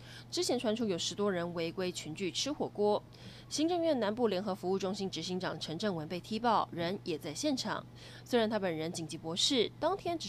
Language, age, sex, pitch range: Chinese, 20-39, female, 165-230 Hz